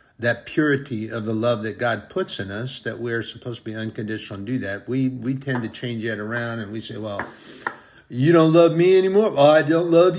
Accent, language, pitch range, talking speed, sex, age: American, English, 110-135 Hz, 230 wpm, male, 50-69